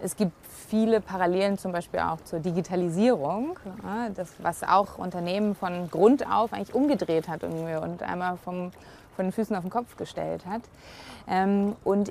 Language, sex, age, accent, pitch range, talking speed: German, female, 20-39, German, 175-205 Hz, 160 wpm